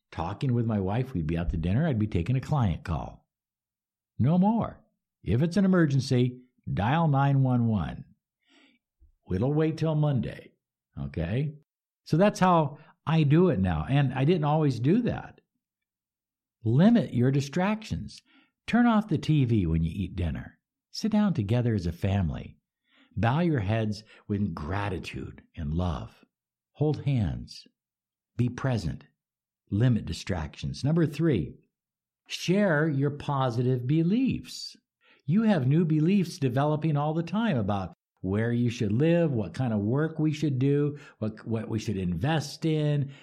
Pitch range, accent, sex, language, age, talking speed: 110-170 Hz, American, male, English, 60-79, 145 wpm